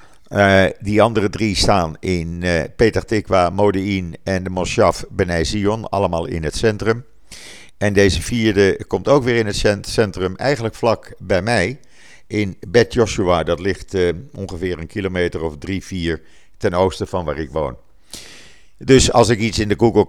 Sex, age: male, 50-69